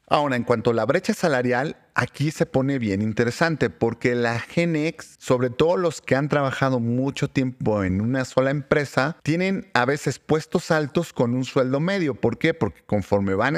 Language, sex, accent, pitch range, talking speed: Spanish, male, Mexican, 115-140 Hz, 180 wpm